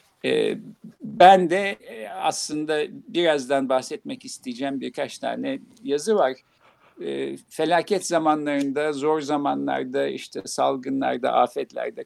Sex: male